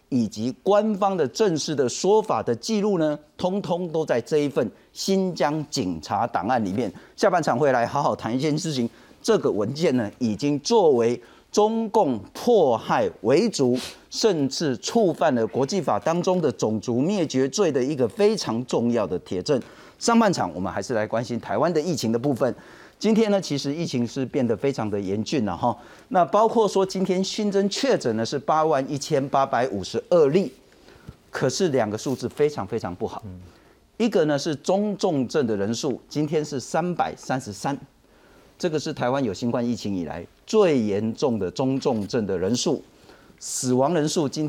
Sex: male